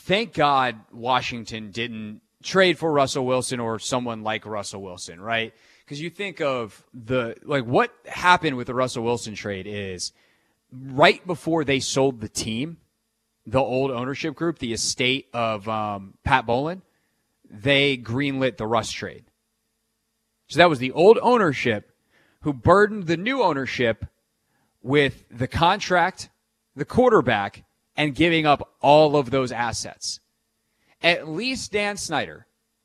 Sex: male